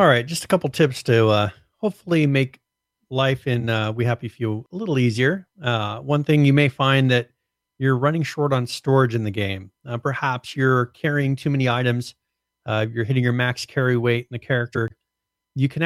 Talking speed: 200 wpm